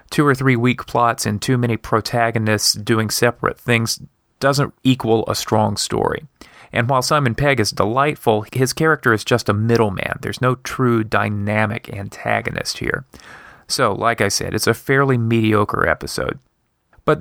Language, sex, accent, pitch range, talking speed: English, male, American, 110-130 Hz, 155 wpm